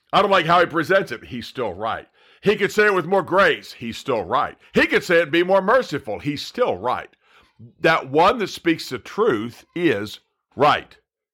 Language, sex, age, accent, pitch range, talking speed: English, male, 50-69, American, 145-190 Hz, 205 wpm